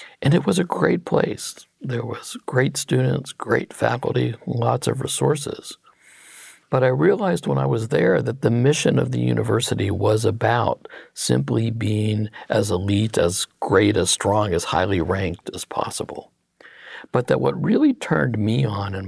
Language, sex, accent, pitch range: English, male, American, 100-120 Hz